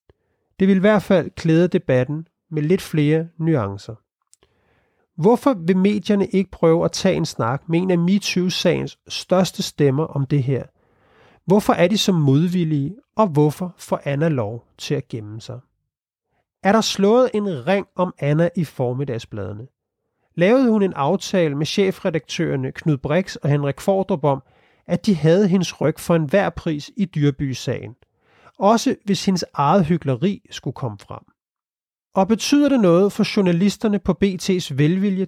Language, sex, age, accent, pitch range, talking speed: Danish, male, 30-49, native, 145-200 Hz, 155 wpm